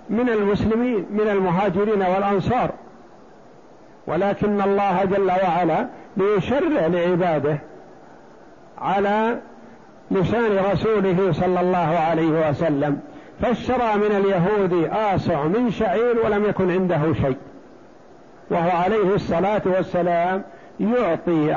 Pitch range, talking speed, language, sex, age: 170-220 Hz, 90 wpm, Arabic, male, 60-79